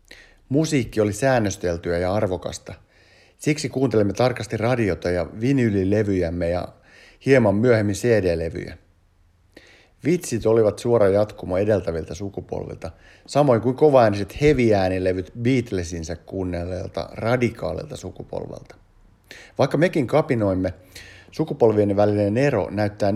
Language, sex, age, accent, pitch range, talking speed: Finnish, male, 50-69, native, 90-125 Hz, 95 wpm